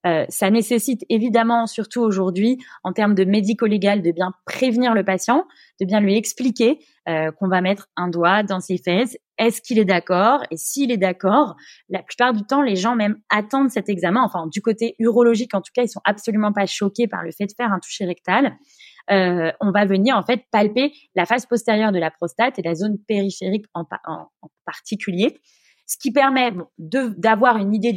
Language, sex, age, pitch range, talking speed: French, female, 20-39, 190-240 Hz, 195 wpm